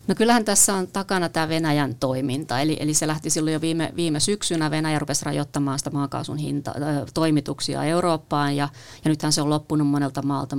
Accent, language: native, Finnish